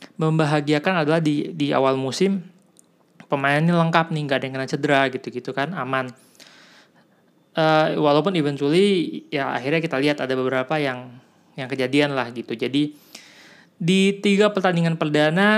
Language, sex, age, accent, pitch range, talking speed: Indonesian, male, 20-39, native, 135-170 Hz, 140 wpm